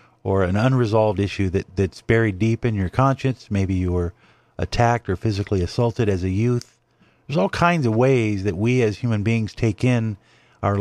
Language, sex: English, male